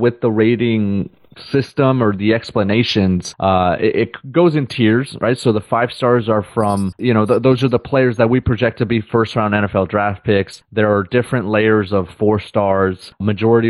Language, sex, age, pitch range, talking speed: English, male, 30-49, 100-120 Hz, 195 wpm